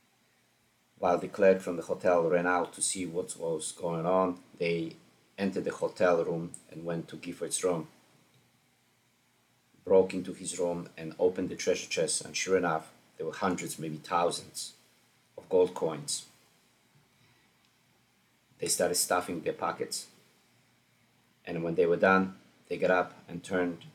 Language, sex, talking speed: English, male, 150 wpm